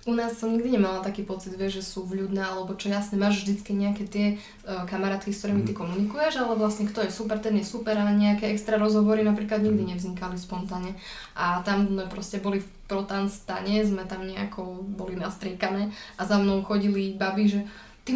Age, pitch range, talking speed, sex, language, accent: 10-29, 195-215 Hz, 190 wpm, female, Czech, native